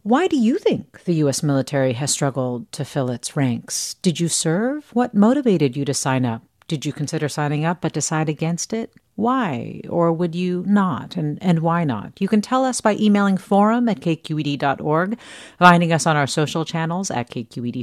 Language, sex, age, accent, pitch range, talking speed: English, female, 50-69, American, 135-180 Hz, 190 wpm